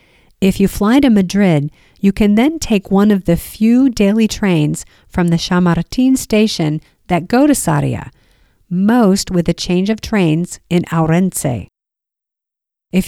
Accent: American